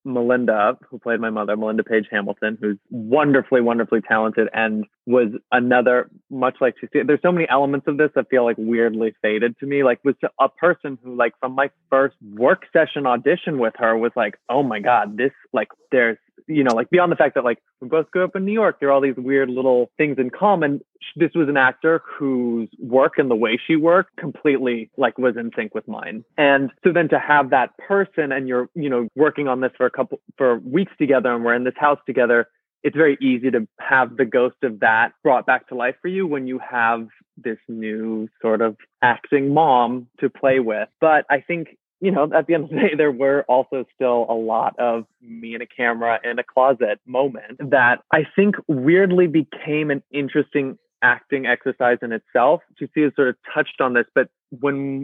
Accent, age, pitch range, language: American, 20-39, 120-145 Hz, English